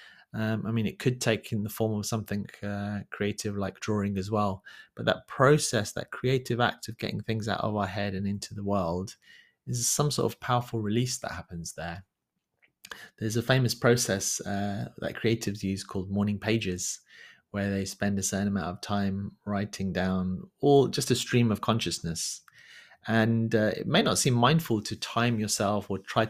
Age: 20-39